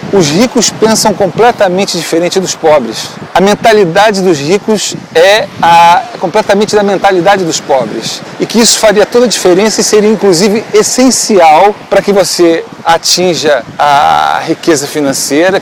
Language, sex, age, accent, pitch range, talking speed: Portuguese, male, 40-59, Brazilian, 160-210 Hz, 140 wpm